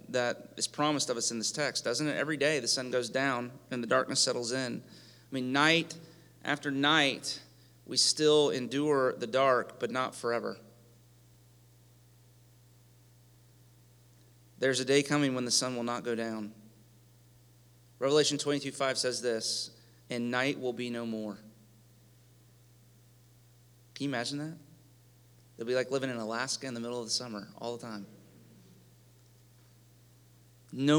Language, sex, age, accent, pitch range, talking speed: English, male, 30-49, American, 120-135 Hz, 145 wpm